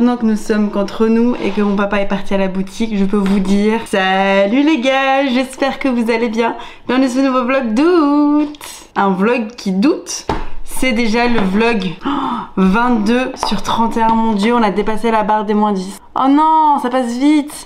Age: 20-39